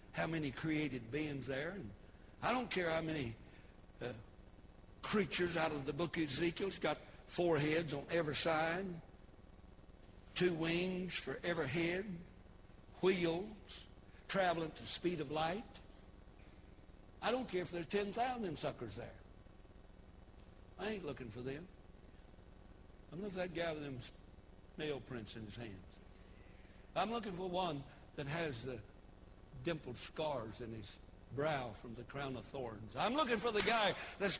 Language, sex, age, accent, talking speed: English, male, 60-79, American, 150 wpm